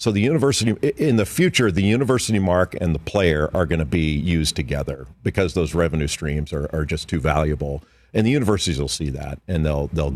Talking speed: 205 wpm